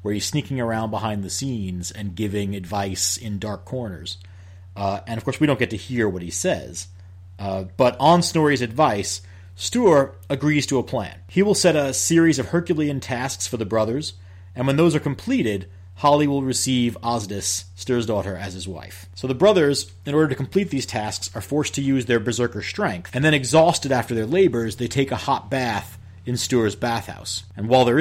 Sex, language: male, English